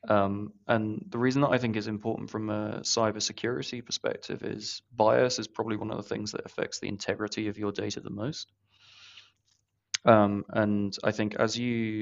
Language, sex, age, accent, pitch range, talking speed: English, male, 20-39, British, 100-110 Hz, 185 wpm